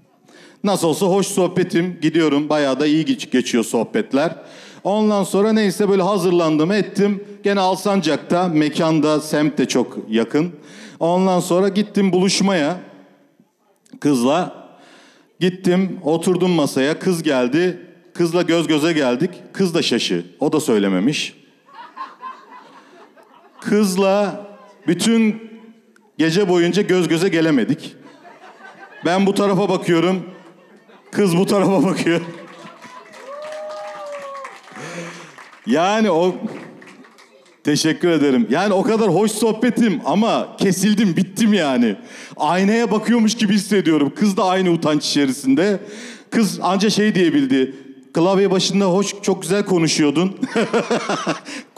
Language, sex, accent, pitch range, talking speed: Turkish, male, native, 170-205 Hz, 105 wpm